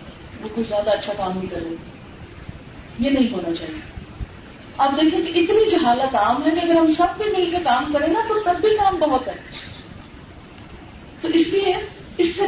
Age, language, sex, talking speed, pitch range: 40-59, Urdu, female, 160 wpm, 230-335 Hz